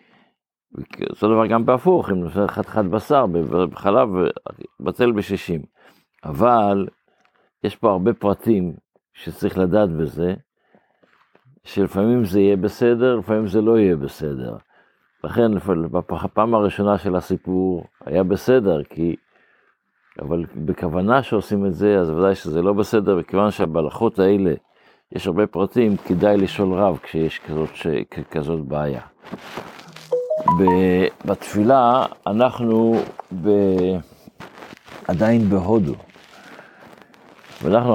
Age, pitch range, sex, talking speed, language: 60-79, 90-110 Hz, male, 110 wpm, Hebrew